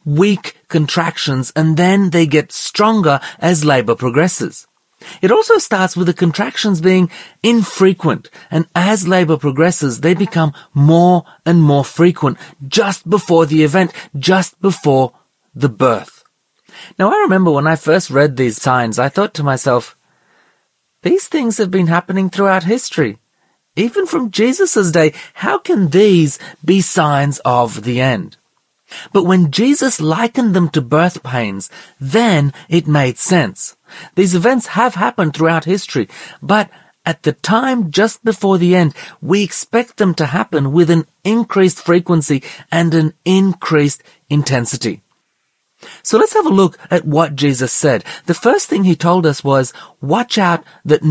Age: 30-49